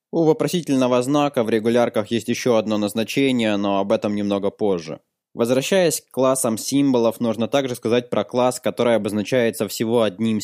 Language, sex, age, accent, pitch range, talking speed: Russian, male, 20-39, native, 110-125 Hz, 155 wpm